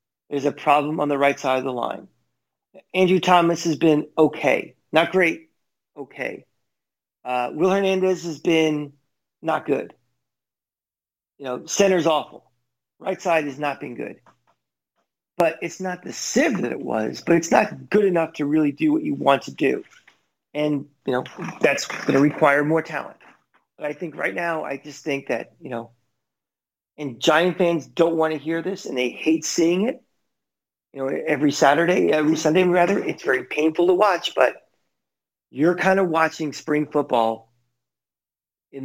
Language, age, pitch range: English, 40-59, 135-165 Hz